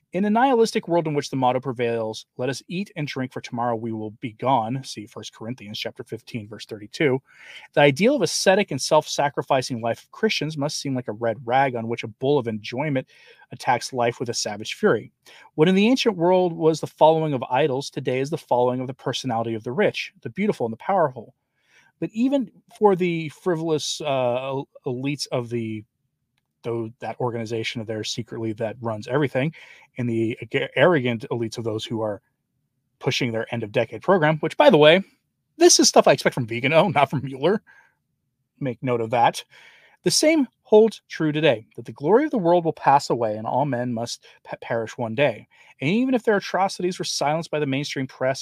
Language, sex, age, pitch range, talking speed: English, male, 30-49, 120-160 Hz, 200 wpm